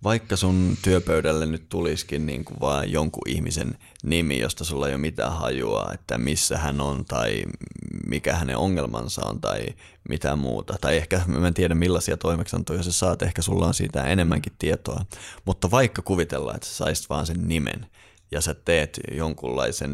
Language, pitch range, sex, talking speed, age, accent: Finnish, 75-95 Hz, male, 170 wpm, 30-49, native